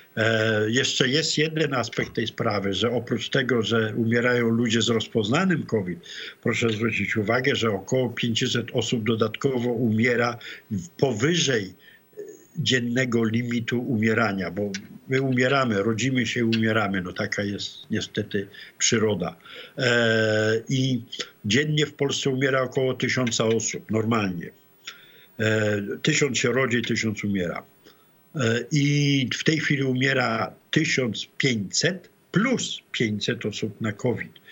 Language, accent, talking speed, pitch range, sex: English, Polish, 120 wpm, 110-130 Hz, male